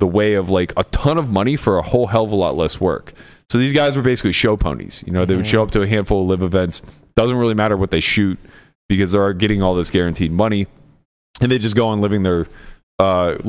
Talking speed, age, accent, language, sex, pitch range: 250 wpm, 30-49, American, English, male, 90-110 Hz